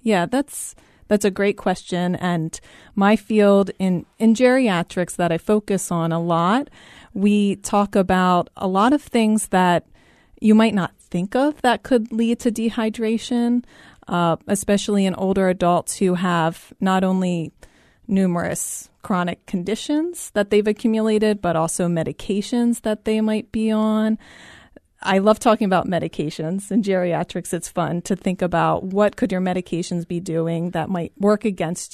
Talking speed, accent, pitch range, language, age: 150 wpm, American, 180-215 Hz, English, 30-49